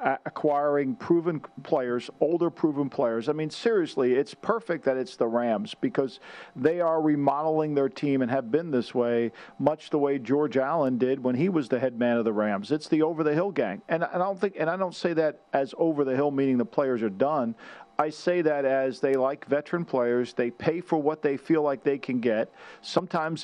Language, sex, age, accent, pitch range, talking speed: English, male, 50-69, American, 135-165 Hz, 215 wpm